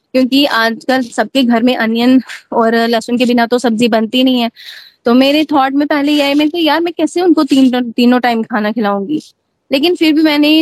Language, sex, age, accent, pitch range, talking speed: Hindi, female, 20-39, native, 240-285 Hz, 210 wpm